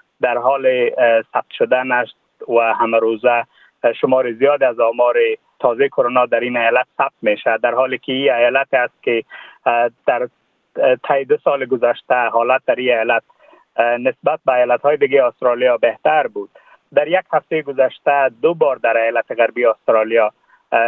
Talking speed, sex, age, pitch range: 145 wpm, male, 30-49, 120-160 Hz